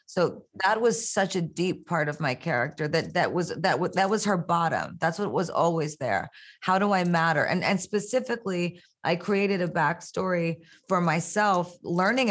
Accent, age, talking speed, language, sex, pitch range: American, 30-49, 185 wpm, English, female, 165-195 Hz